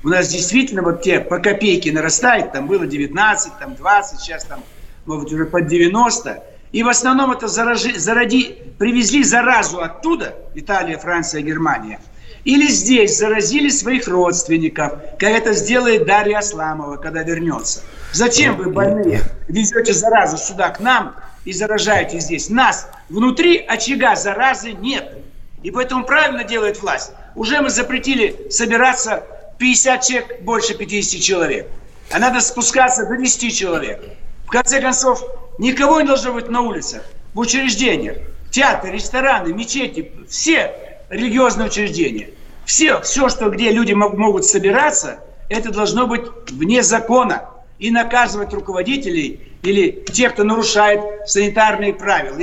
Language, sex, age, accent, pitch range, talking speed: Russian, male, 60-79, native, 200-260 Hz, 130 wpm